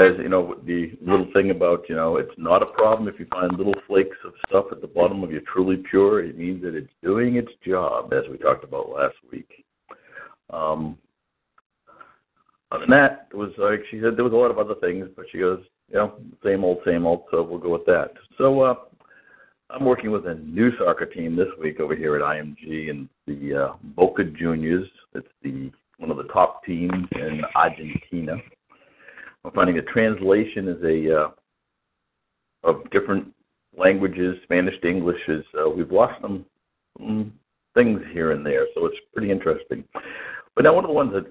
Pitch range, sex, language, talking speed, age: 85-125 Hz, male, English, 195 wpm, 60-79